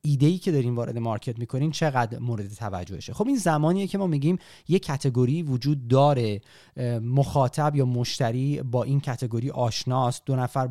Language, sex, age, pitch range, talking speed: Persian, male, 30-49, 120-150 Hz, 155 wpm